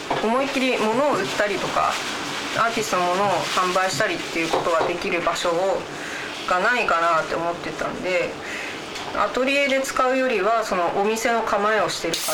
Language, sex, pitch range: Japanese, female, 175-225 Hz